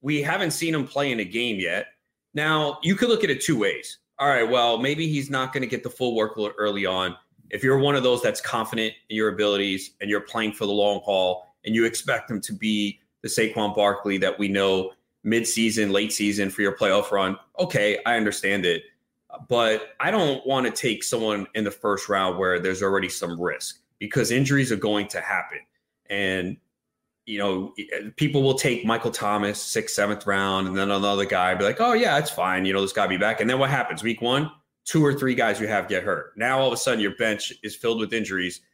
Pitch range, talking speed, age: 100-135 Hz, 225 wpm, 30-49